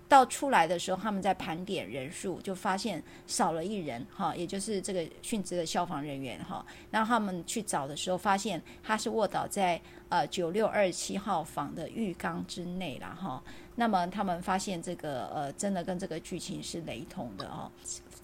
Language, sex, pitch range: Chinese, female, 170-205 Hz